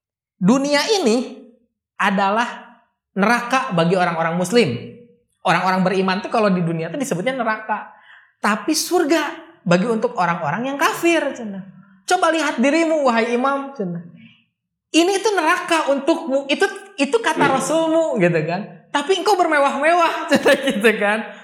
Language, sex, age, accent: Indonesian, male, 20-39, native